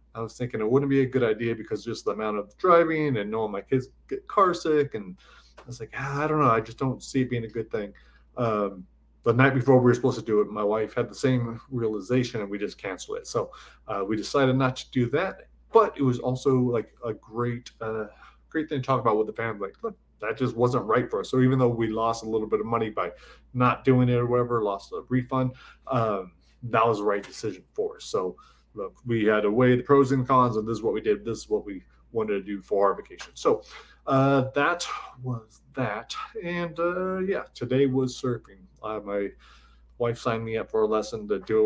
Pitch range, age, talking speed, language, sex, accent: 110-150 Hz, 30-49, 240 wpm, English, male, American